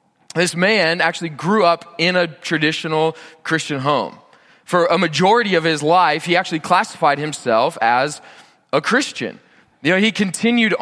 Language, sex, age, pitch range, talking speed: English, male, 20-39, 150-190 Hz, 150 wpm